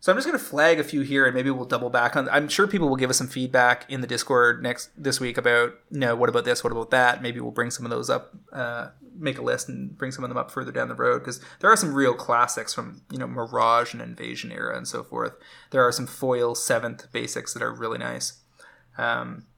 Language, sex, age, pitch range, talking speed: English, male, 20-39, 120-145 Hz, 265 wpm